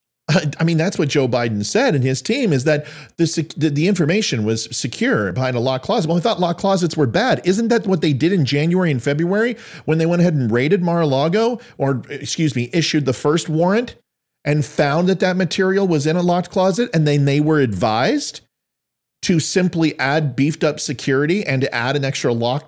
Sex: male